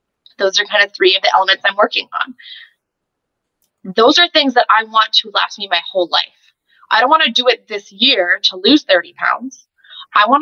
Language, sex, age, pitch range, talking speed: English, female, 20-39, 200-260 Hz, 215 wpm